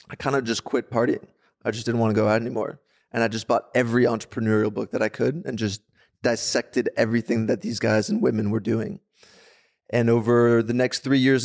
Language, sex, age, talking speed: English, male, 20-39, 215 wpm